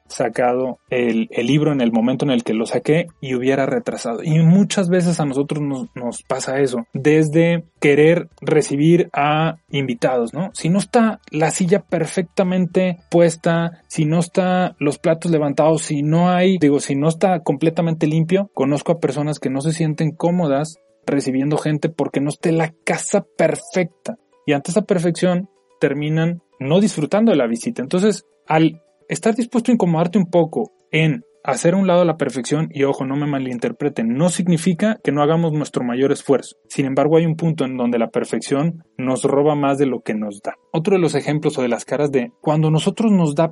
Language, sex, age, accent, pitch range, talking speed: Spanish, male, 30-49, Mexican, 140-180 Hz, 185 wpm